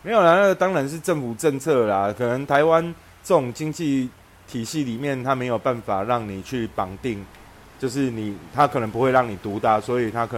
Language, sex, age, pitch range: Chinese, male, 30-49, 105-130 Hz